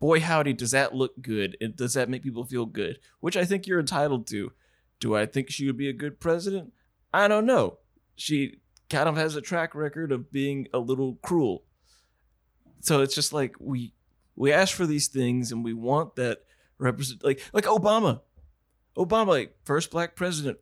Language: English